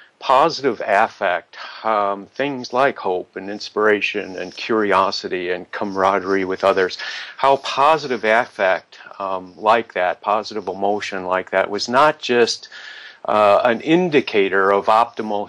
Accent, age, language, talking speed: American, 50-69, English, 125 wpm